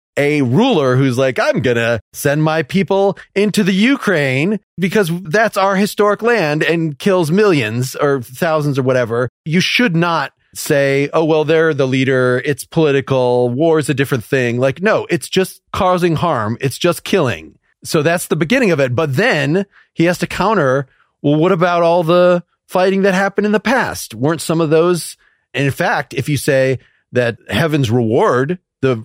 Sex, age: male, 30-49